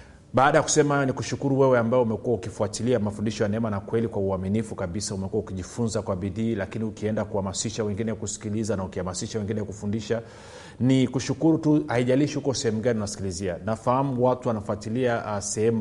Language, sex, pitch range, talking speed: Swahili, male, 100-120 Hz, 165 wpm